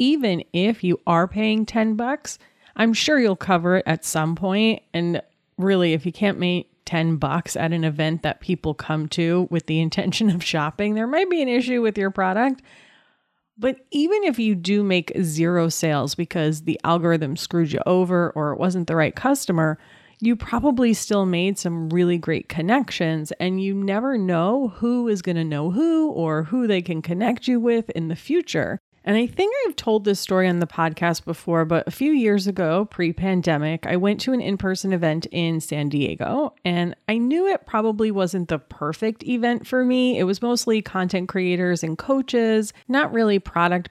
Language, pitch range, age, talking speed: English, 165-225 Hz, 30-49, 185 wpm